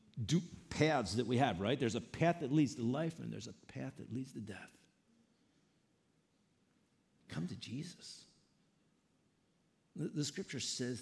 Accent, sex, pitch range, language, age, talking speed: American, male, 115-170 Hz, English, 50-69, 150 wpm